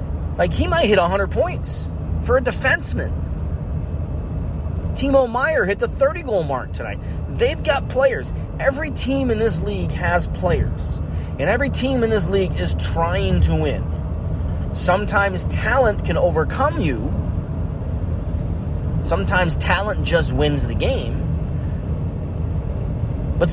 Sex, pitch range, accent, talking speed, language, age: male, 80-90 Hz, American, 120 wpm, English, 30-49